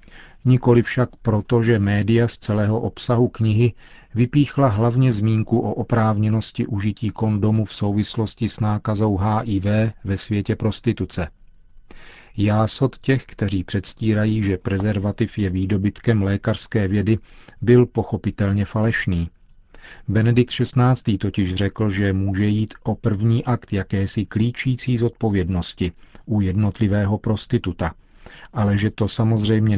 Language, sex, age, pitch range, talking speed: Czech, male, 40-59, 100-120 Hz, 115 wpm